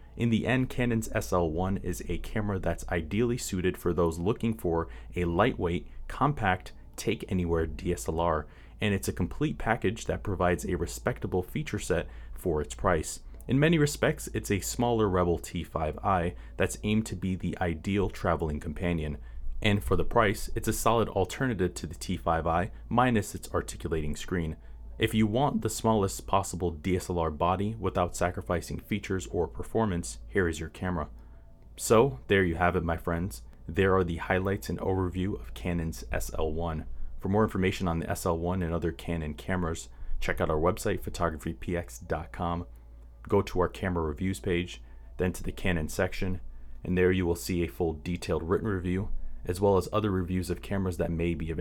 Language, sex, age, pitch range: English, male, 30-49, 80-100 Hz